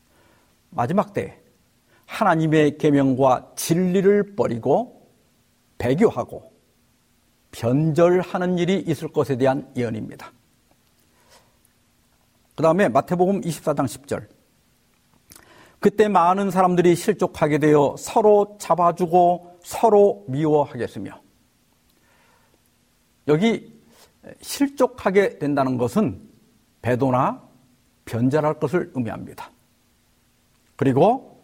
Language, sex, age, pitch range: Korean, male, 50-69, 135-195 Hz